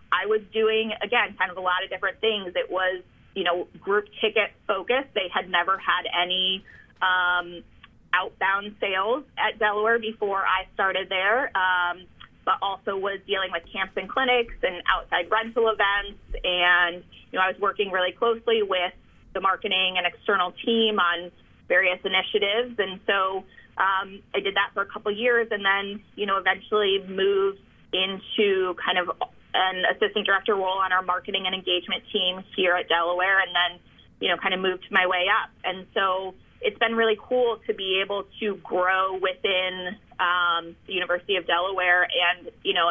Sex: female